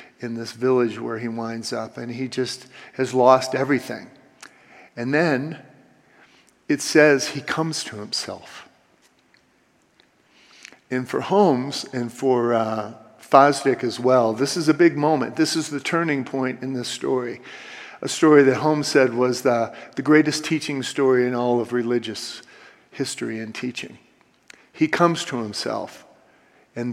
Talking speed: 145 wpm